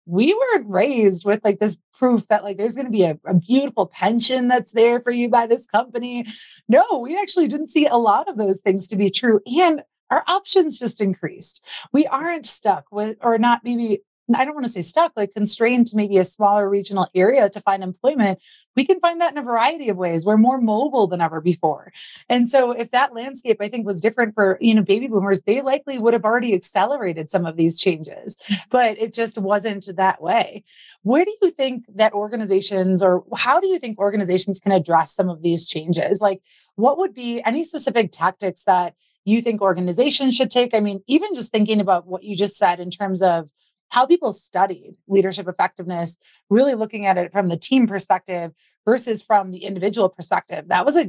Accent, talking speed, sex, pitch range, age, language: American, 205 wpm, female, 190-245 Hz, 30-49, English